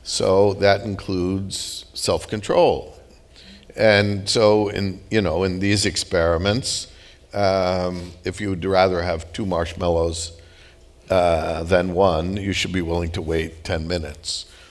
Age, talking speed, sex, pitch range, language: 60-79, 125 wpm, male, 90-125 Hz, English